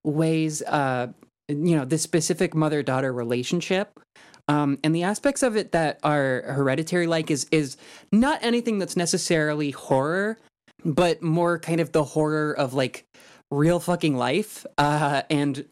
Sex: male